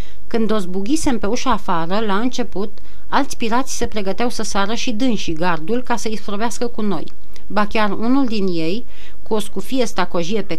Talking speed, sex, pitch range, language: 180 wpm, female, 195-240 Hz, Romanian